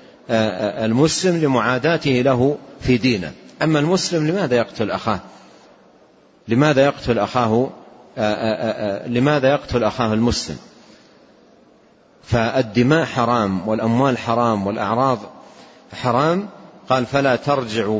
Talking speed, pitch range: 85 wpm, 110-145 Hz